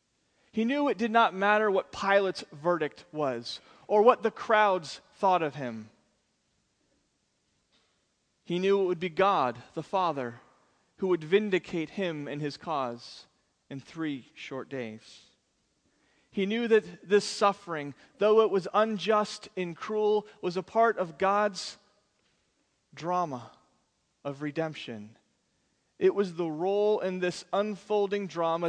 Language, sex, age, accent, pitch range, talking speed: English, male, 30-49, American, 160-205 Hz, 130 wpm